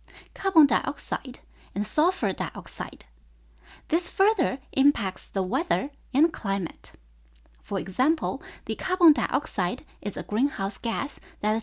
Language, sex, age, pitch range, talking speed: English, female, 20-39, 190-285 Hz, 115 wpm